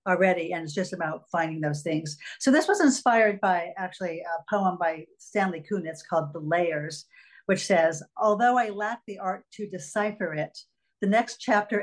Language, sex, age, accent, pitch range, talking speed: English, female, 50-69, American, 160-205 Hz, 180 wpm